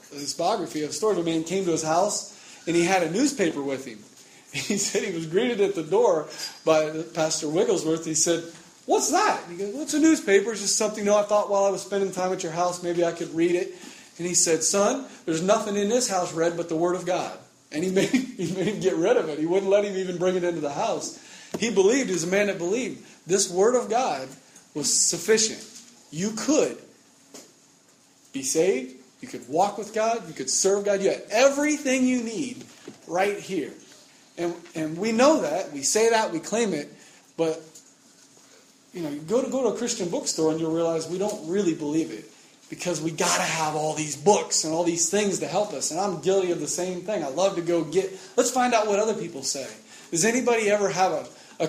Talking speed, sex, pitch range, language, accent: 230 wpm, male, 165-215 Hz, English, American